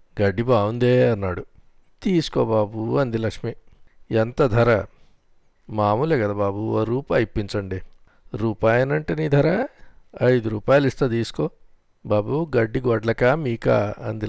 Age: 50-69